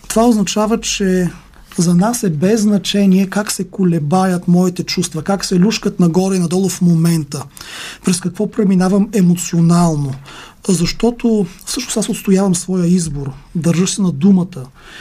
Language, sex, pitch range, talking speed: Bulgarian, male, 170-205 Hz, 140 wpm